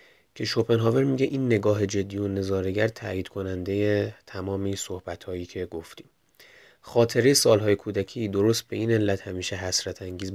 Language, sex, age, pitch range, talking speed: Persian, male, 30-49, 95-115 Hz, 145 wpm